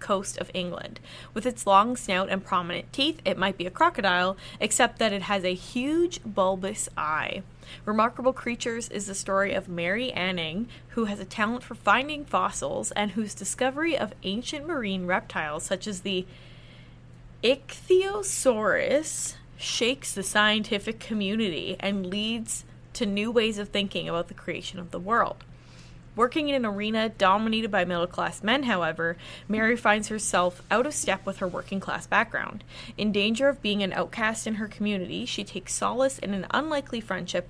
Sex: female